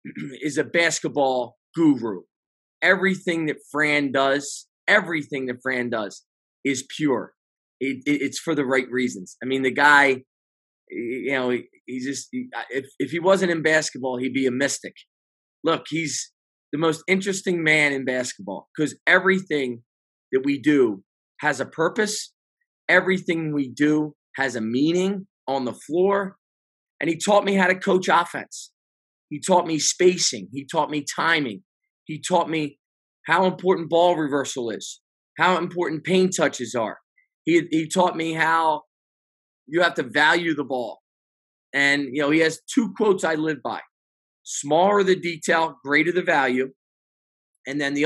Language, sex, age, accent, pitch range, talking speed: English, male, 20-39, American, 135-180 Hz, 150 wpm